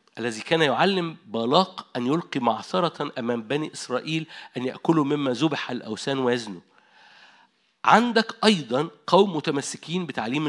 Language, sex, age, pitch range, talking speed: Arabic, male, 50-69, 145-215 Hz, 120 wpm